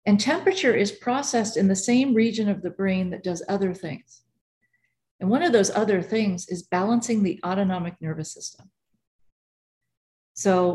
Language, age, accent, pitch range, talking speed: English, 40-59, American, 170-215 Hz, 155 wpm